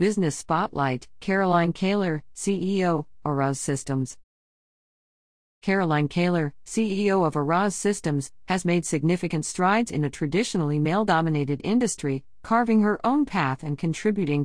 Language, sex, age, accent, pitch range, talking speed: English, female, 50-69, American, 140-190 Hz, 115 wpm